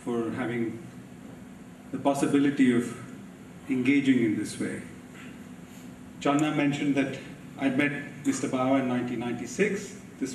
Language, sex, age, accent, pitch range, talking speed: English, male, 40-59, Indian, 120-145 Hz, 110 wpm